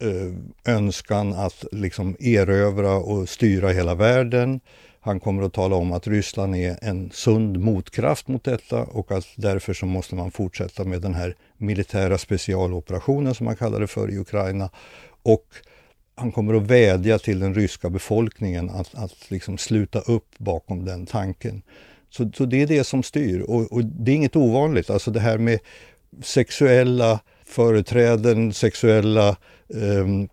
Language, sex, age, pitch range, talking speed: English, male, 60-79, 95-115 Hz, 155 wpm